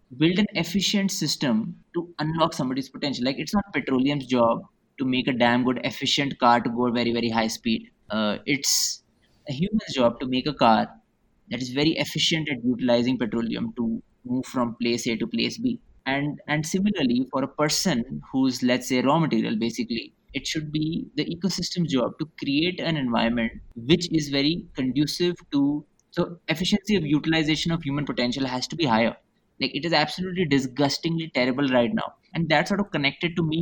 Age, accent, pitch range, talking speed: 20-39, Indian, 130-170 Hz, 185 wpm